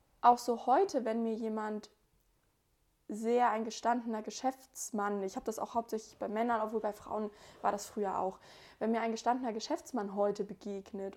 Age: 20-39